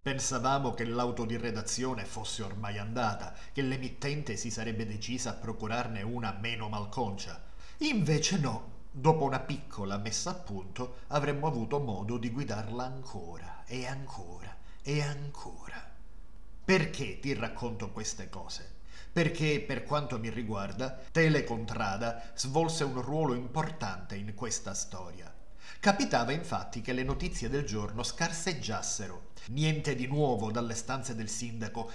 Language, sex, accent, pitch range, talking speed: Italian, male, native, 110-145 Hz, 130 wpm